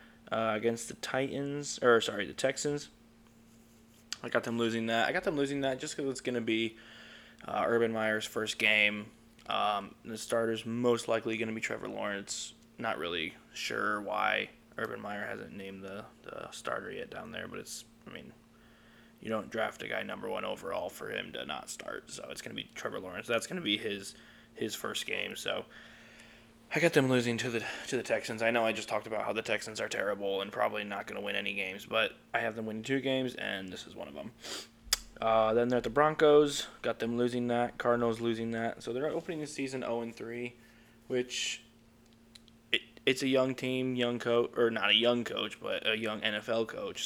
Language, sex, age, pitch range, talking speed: English, male, 20-39, 110-125 Hz, 210 wpm